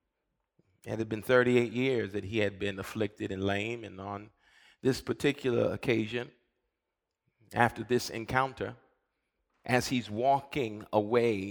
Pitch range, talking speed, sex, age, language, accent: 110-140 Hz, 125 wpm, male, 40-59, English, American